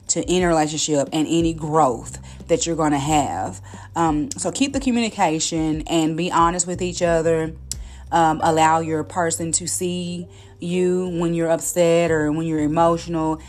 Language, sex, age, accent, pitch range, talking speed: English, female, 30-49, American, 150-175 Hz, 160 wpm